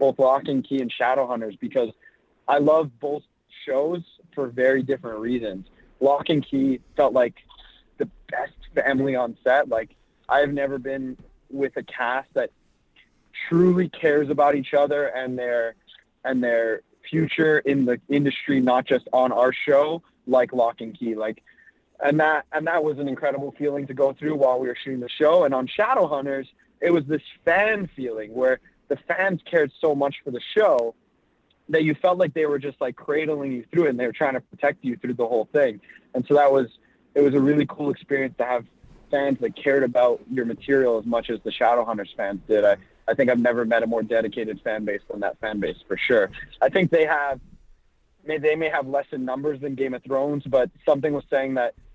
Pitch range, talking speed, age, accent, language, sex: 125-150 Hz, 200 wpm, 20-39, American, English, male